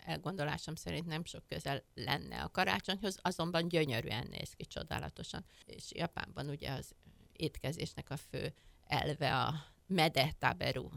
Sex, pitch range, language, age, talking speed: female, 140-190 Hz, Hungarian, 50-69, 125 wpm